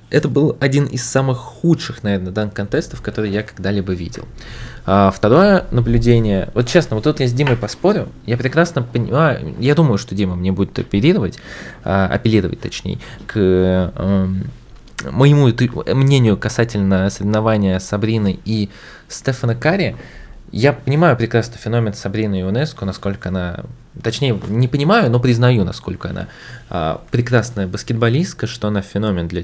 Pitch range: 95-130 Hz